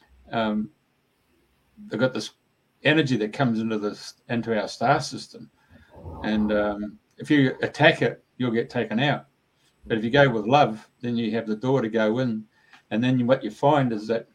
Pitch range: 110-130 Hz